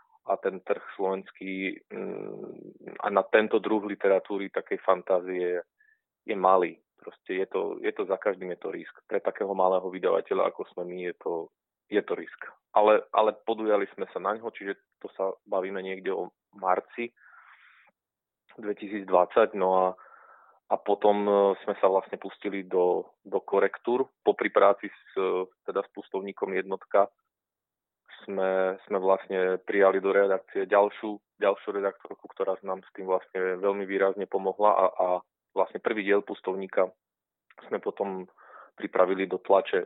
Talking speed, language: 145 wpm, Slovak